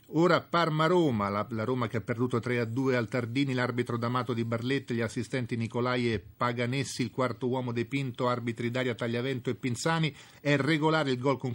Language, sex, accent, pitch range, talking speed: Italian, male, native, 120-145 Hz, 170 wpm